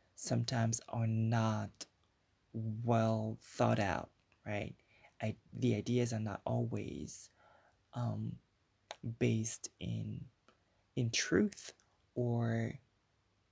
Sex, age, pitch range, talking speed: male, 20-39, 105-130 Hz, 85 wpm